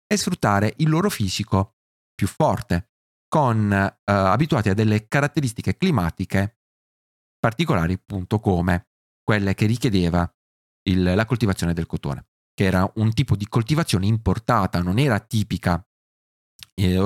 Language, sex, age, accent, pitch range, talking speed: Italian, male, 30-49, native, 90-120 Hz, 125 wpm